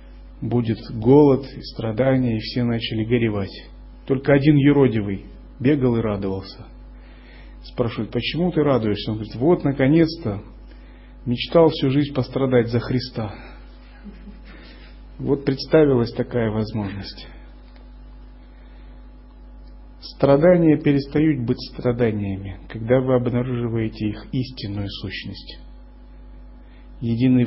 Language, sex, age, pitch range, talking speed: Russian, male, 40-59, 110-140 Hz, 95 wpm